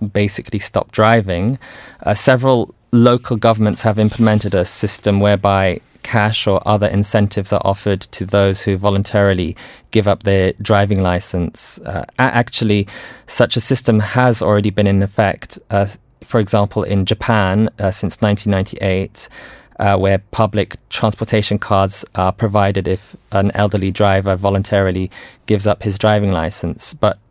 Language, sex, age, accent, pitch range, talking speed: English, male, 20-39, British, 95-110 Hz, 140 wpm